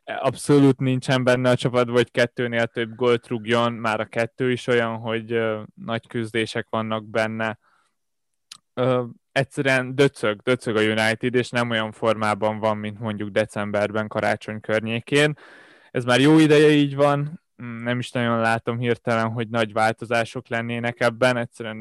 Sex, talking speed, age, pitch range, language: male, 150 wpm, 20-39, 110-125 Hz, Hungarian